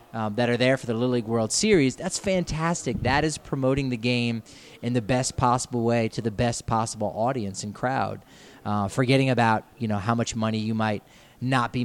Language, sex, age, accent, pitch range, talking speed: English, male, 30-49, American, 105-125 Hz, 210 wpm